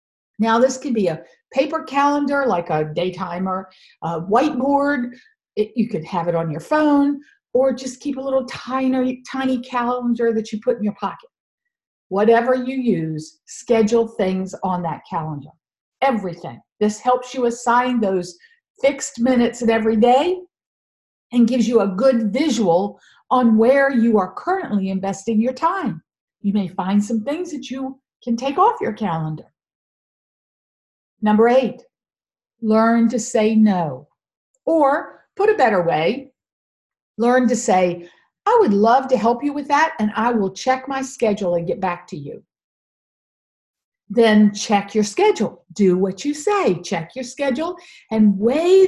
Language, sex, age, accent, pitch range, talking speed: English, female, 50-69, American, 210-285 Hz, 155 wpm